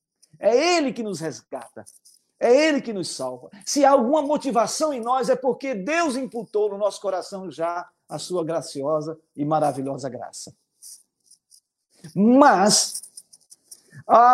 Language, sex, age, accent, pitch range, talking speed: Portuguese, male, 50-69, Brazilian, 200-275 Hz, 135 wpm